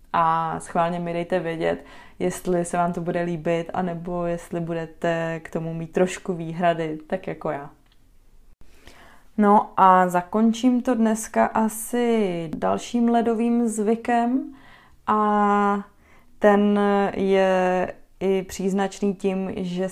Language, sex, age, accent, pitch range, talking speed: Czech, female, 20-39, native, 180-210 Hz, 115 wpm